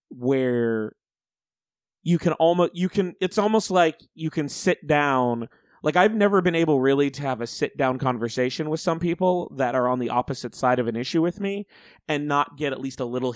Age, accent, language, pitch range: 30-49, American, English, 125-165 Hz